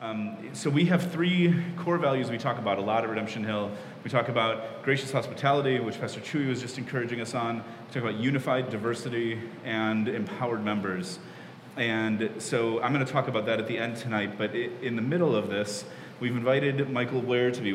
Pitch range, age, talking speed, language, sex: 110-130 Hz, 30-49, 205 wpm, English, male